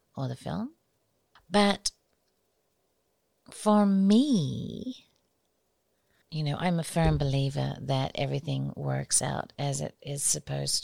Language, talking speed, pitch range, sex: English, 110 wpm, 135-175 Hz, female